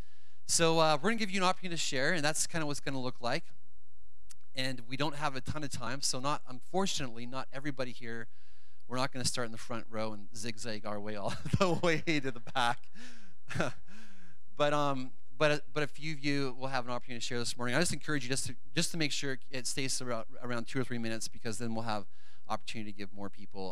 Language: English